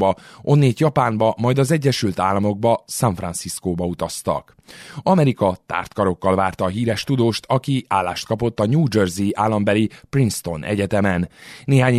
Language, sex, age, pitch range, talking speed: Hungarian, male, 20-39, 95-135 Hz, 125 wpm